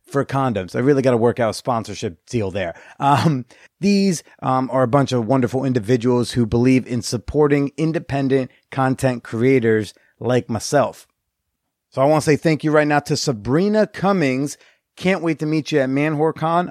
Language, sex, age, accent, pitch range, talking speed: English, male, 30-49, American, 125-160 Hz, 175 wpm